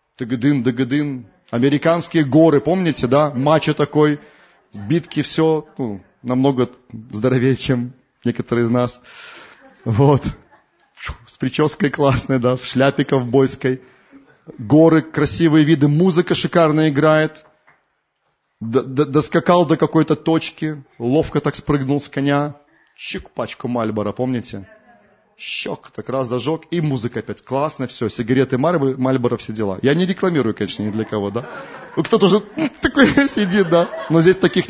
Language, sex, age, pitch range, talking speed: Russian, male, 30-49, 125-170 Hz, 130 wpm